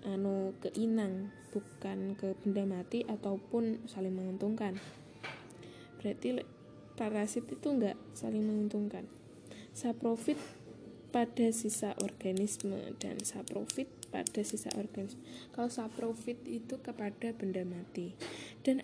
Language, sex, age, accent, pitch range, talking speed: Indonesian, female, 10-29, native, 200-245 Hz, 100 wpm